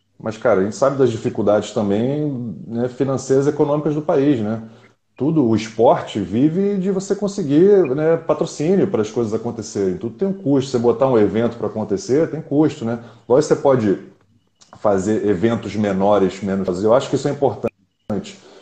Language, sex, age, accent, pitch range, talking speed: Portuguese, male, 30-49, Brazilian, 105-145 Hz, 175 wpm